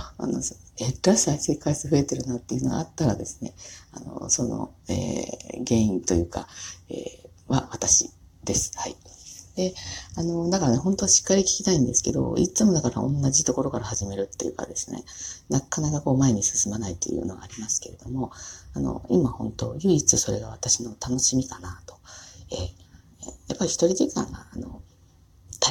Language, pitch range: Japanese, 90-140 Hz